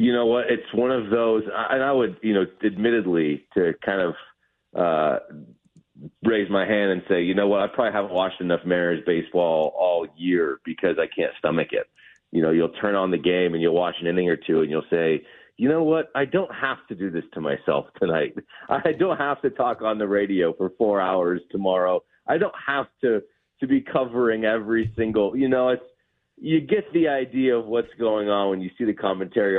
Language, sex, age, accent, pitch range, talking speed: English, male, 30-49, American, 90-115 Hz, 215 wpm